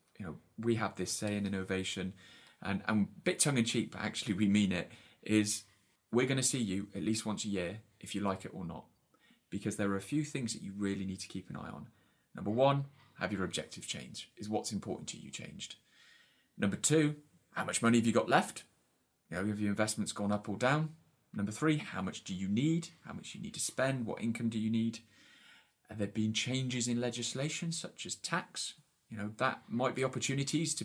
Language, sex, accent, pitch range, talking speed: English, male, British, 105-150 Hz, 225 wpm